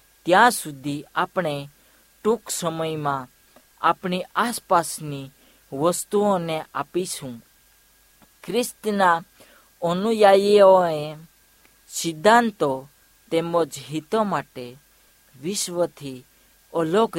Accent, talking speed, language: native, 55 wpm, Hindi